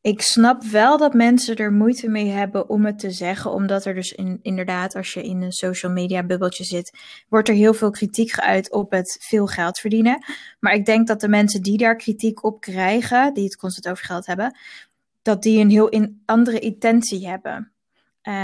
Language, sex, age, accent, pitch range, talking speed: Dutch, female, 20-39, Dutch, 190-225 Hz, 205 wpm